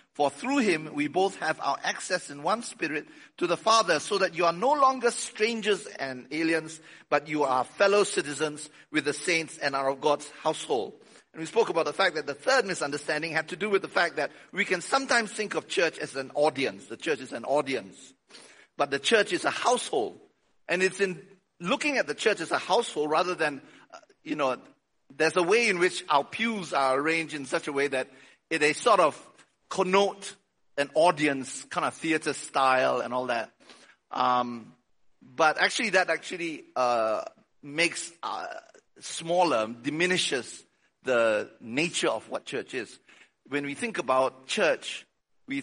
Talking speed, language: 180 wpm, English